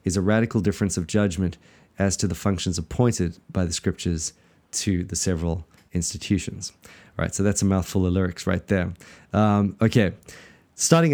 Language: English